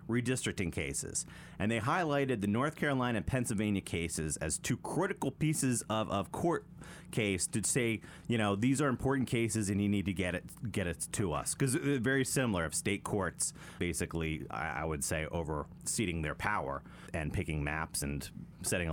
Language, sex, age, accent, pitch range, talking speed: English, male, 30-49, American, 85-115 Hz, 180 wpm